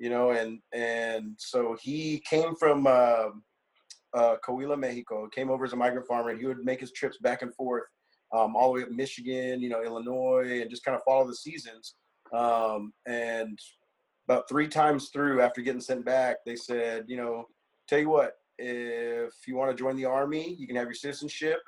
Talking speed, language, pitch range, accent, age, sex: 200 wpm, English, 115-135 Hz, American, 30-49, male